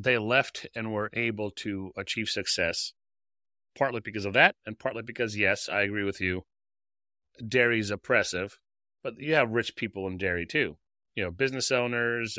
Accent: American